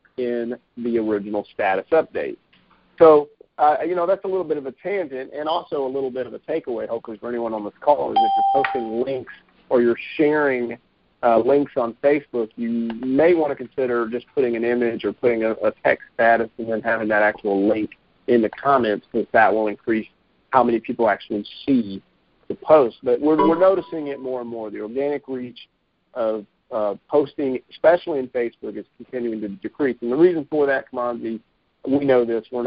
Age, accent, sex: 40-59, American, male